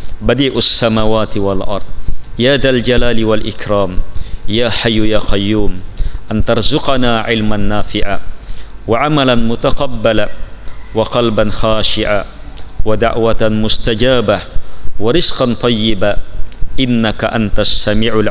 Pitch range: 100-115 Hz